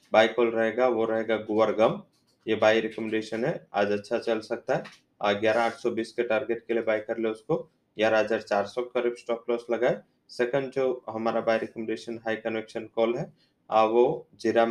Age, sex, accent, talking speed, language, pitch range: 20-39, male, Indian, 170 wpm, English, 110-120 Hz